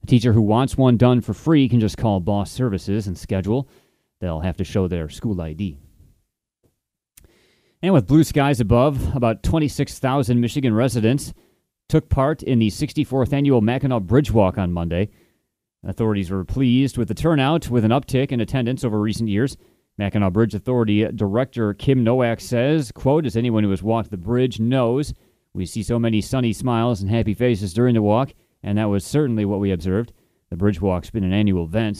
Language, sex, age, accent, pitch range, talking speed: English, male, 30-49, American, 100-130 Hz, 185 wpm